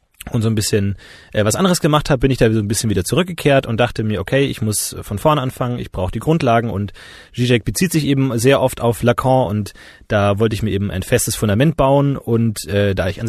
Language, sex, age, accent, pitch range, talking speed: German, male, 30-49, German, 110-135 Hz, 240 wpm